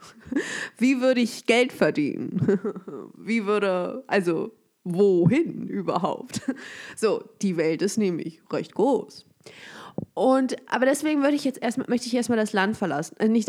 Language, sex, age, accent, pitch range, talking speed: German, female, 20-39, German, 185-250 Hz, 140 wpm